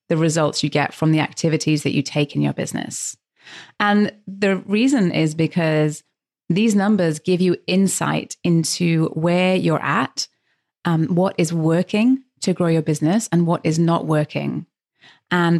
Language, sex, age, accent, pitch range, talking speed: English, female, 30-49, British, 160-185 Hz, 160 wpm